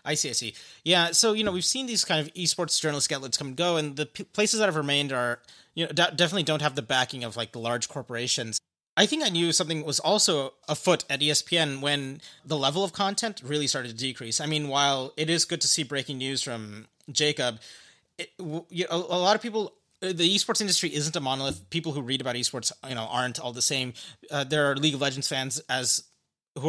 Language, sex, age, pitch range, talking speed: English, male, 30-49, 130-165 Hz, 235 wpm